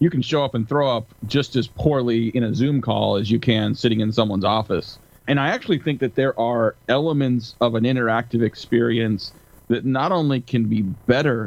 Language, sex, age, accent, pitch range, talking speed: English, male, 30-49, American, 115-135 Hz, 205 wpm